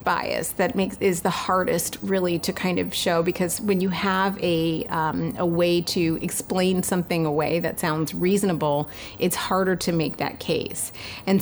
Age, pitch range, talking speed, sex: 30-49, 160-185 Hz, 175 wpm, female